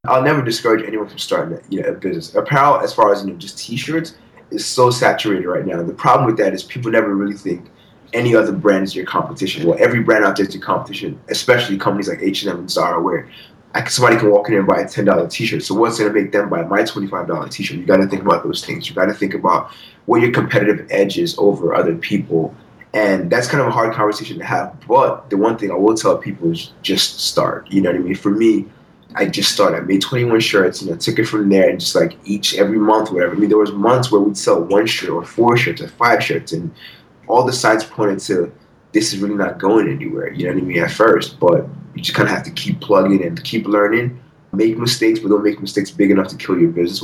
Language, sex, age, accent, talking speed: English, male, 20-39, American, 255 wpm